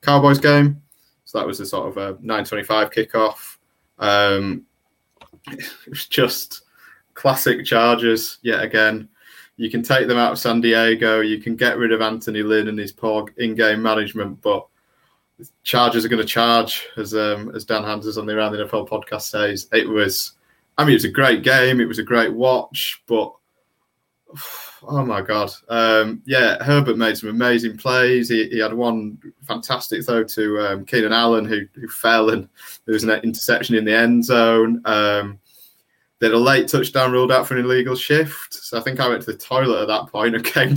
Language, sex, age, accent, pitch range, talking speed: English, male, 20-39, British, 110-125 Hz, 190 wpm